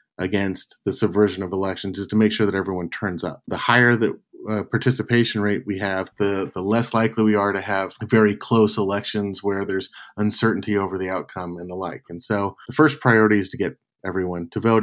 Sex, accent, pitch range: male, American, 95-115 Hz